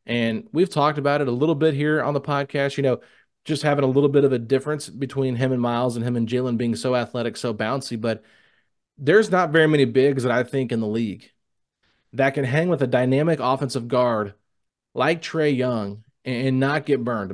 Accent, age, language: American, 30-49, English